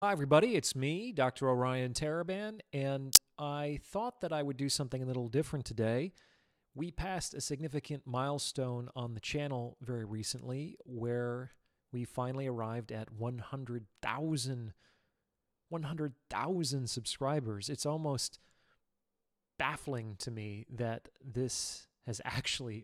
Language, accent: English, American